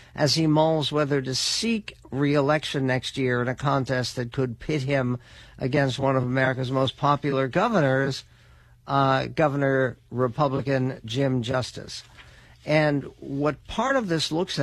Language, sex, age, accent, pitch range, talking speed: English, male, 60-79, American, 125-150 Hz, 140 wpm